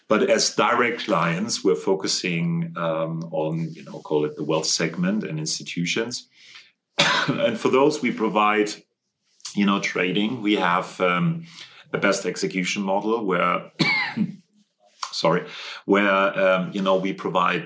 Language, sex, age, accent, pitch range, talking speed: English, male, 40-59, German, 90-125 Hz, 135 wpm